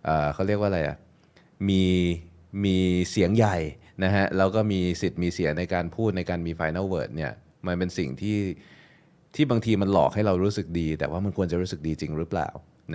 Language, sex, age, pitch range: Thai, male, 20-39, 85-105 Hz